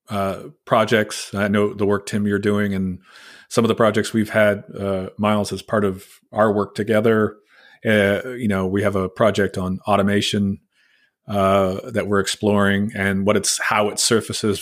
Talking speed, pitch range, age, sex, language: 175 wpm, 100-120 Hz, 30-49, male, English